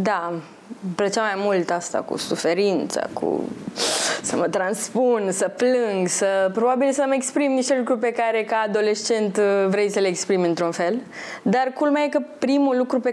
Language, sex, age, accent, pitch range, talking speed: Romanian, female, 20-39, native, 190-255 Hz, 165 wpm